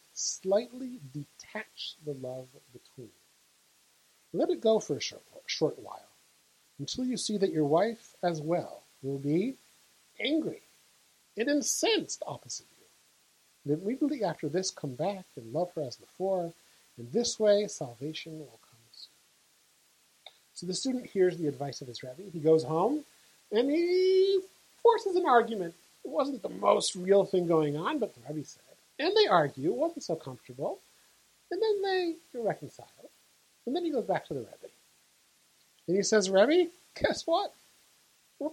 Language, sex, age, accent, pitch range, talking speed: English, male, 50-69, American, 155-260 Hz, 160 wpm